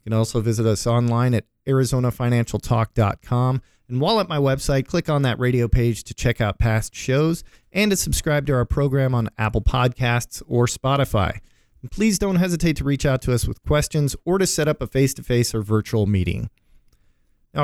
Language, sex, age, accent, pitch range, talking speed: English, male, 40-59, American, 115-150 Hz, 185 wpm